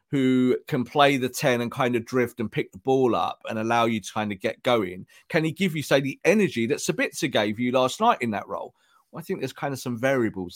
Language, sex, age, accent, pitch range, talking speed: English, male, 40-59, British, 115-155 Hz, 260 wpm